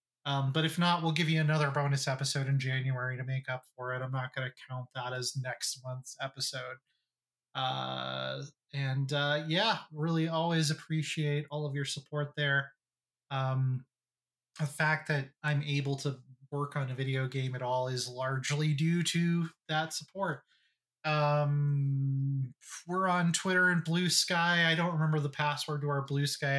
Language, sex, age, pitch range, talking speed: English, male, 20-39, 135-160 Hz, 170 wpm